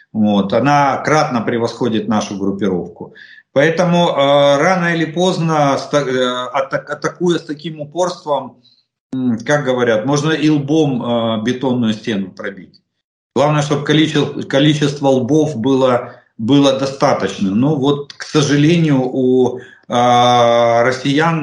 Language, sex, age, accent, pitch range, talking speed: Russian, male, 50-69, native, 125-155 Hz, 100 wpm